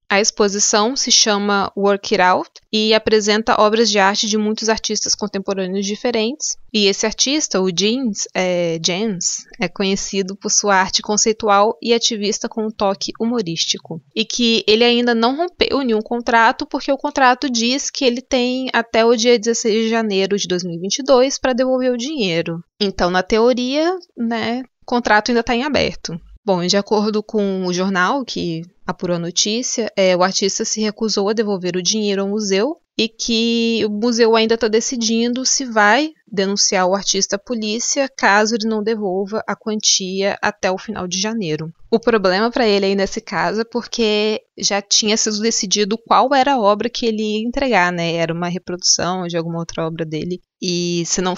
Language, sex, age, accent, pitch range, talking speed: Portuguese, female, 20-39, Brazilian, 190-235 Hz, 175 wpm